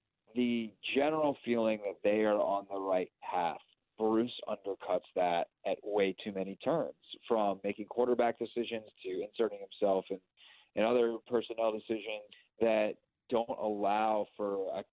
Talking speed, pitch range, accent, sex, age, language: 140 wpm, 100-125 Hz, American, male, 30-49, English